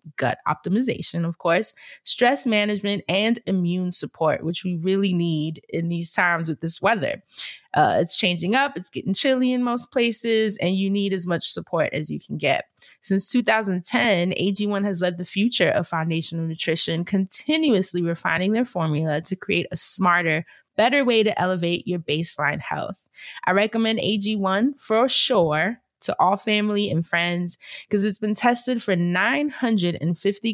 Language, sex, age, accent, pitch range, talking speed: English, female, 20-39, American, 170-215 Hz, 155 wpm